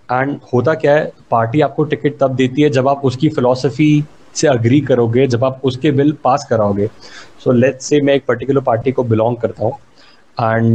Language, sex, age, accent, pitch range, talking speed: Hindi, male, 30-49, native, 120-145 Hz, 195 wpm